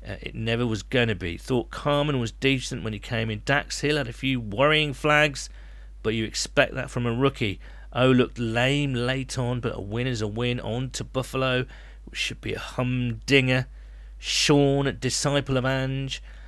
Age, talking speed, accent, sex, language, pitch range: 40-59, 190 wpm, British, male, English, 95-130 Hz